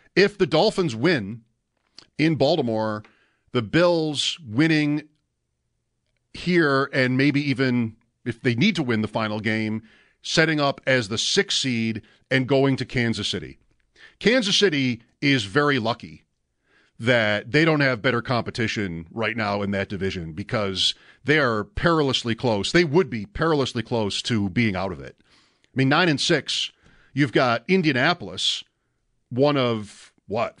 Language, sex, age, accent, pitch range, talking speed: English, male, 50-69, American, 110-155 Hz, 145 wpm